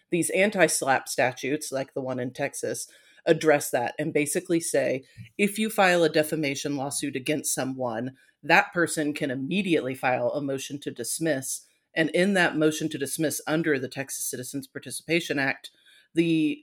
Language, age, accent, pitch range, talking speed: English, 30-49, American, 135-165 Hz, 160 wpm